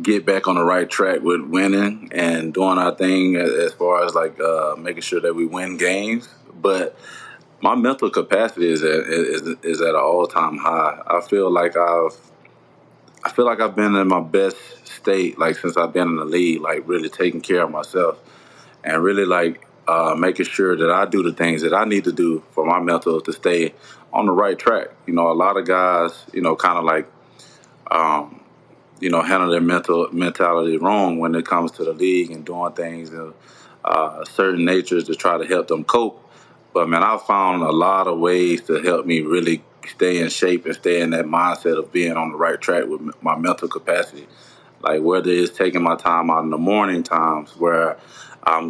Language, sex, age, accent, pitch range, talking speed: English, male, 20-39, American, 85-95 Hz, 205 wpm